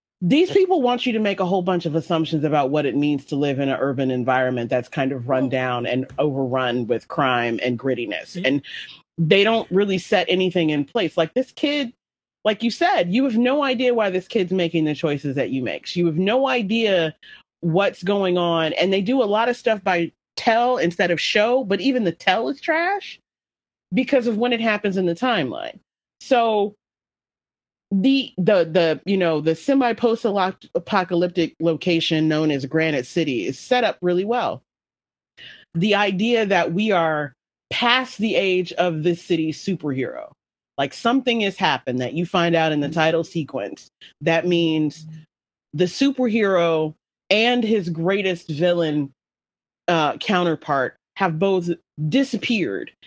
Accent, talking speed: American, 165 wpm